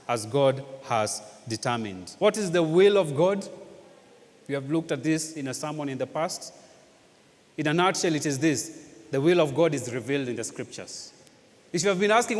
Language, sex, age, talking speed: English, male, 30-49, 200 wpm